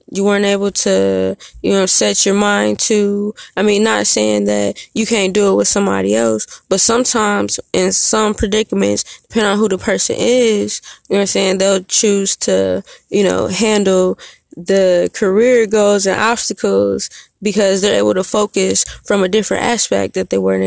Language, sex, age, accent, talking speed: English, female, 20-39, American, 175 wpm